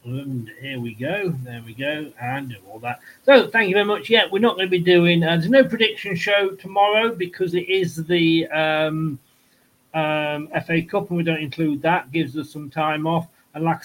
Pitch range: 145-190 Hz